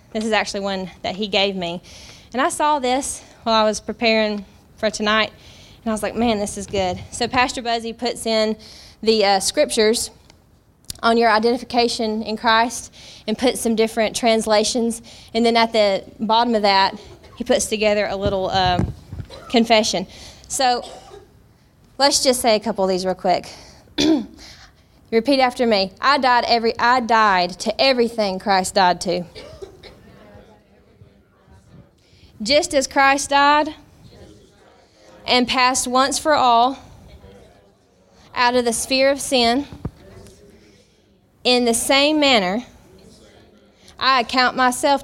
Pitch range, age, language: 205-255 Hz, 20-39, English